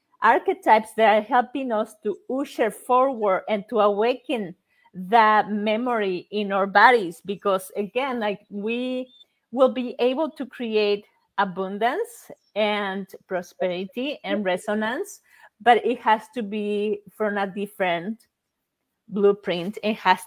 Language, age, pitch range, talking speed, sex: English, 40-59, 200-240 Hz, 120 wpm, female